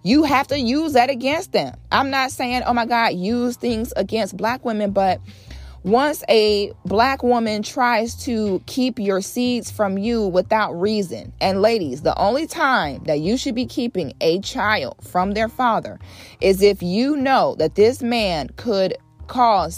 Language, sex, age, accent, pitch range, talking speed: English, female, 30-49, American, 185-240 Hz, 170 wpm